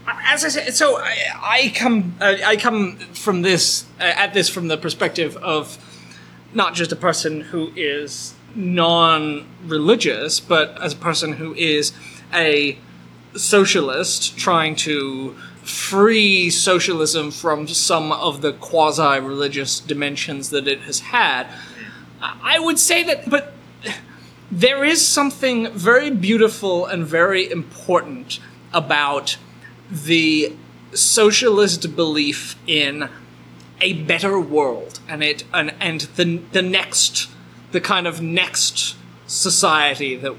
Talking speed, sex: 120 wpm, male